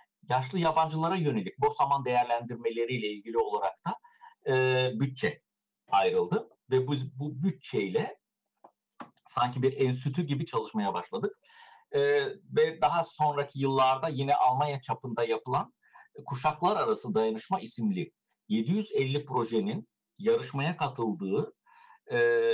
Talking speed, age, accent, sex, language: 105 wpm, 60-79, native, male, Turkish